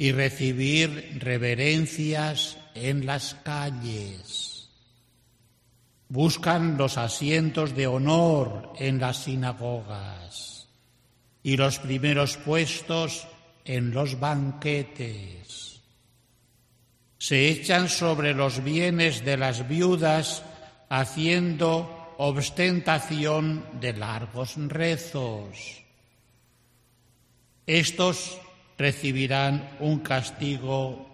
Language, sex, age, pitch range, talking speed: Spanish, male, 60-79, 125-160 Hz, 75 wpm